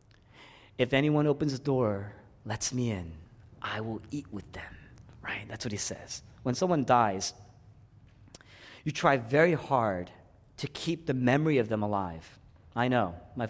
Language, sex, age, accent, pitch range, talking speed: English, male, 30-49, American, 100-135 Hz, 155 wpm